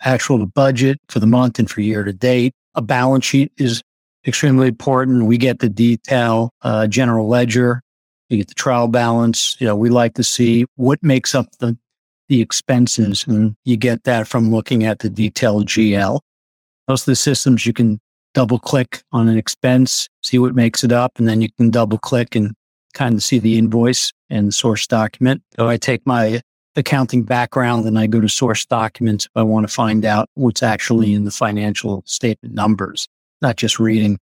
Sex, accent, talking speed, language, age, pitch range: male, American, 195 wpm, English, 50-69, 110-125 Hz